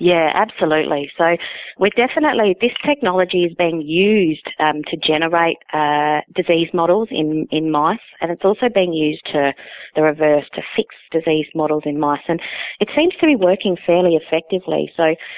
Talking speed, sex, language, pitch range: 165 wpm, female, English, 150-175 Hz